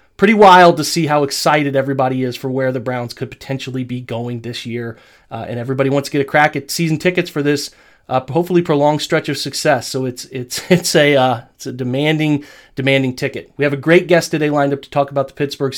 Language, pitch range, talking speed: English, 135-170 Hz, 230 wpm